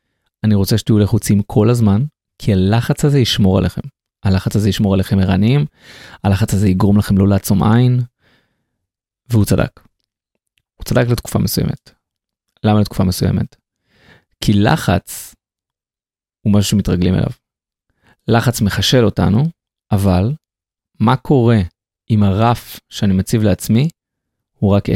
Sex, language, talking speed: male, Hebrew, 125 wpm